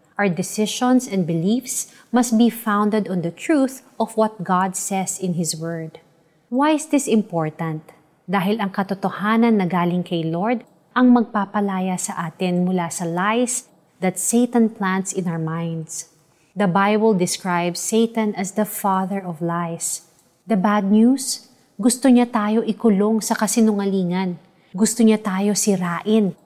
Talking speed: 145 wpm